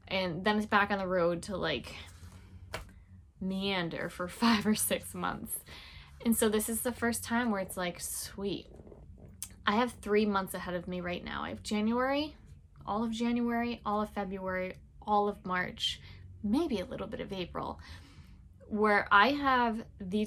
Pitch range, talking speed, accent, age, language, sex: 180-230 Hz, 170 wpm, American, 10-29, English, female